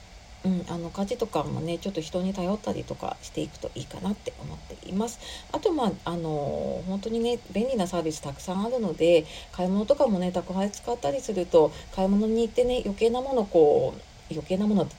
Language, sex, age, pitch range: Japanese, female, 40-59, 175-235 Hz